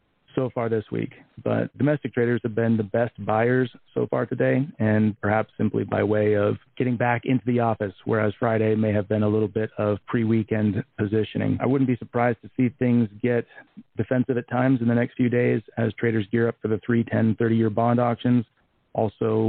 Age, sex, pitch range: 40-59, male, 105-120 Hz